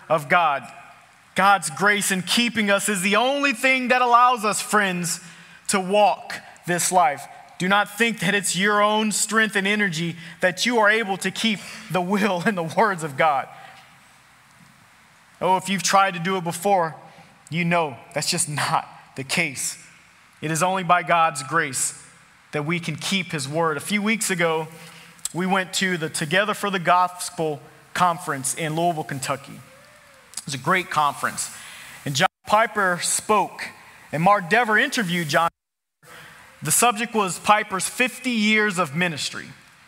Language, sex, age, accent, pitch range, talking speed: English, male, 30-49, American, 165-205 Hz, 165 wpm